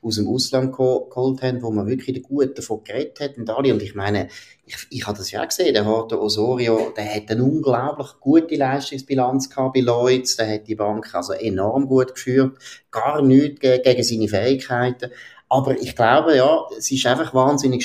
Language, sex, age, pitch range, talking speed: German, male, 30-49, 120-150 Hz, 190 wpm